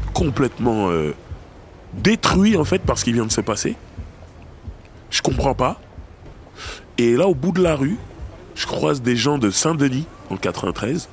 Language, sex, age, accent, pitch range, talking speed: French, male, 20-39, French, 100-150 Hz, 160 wpm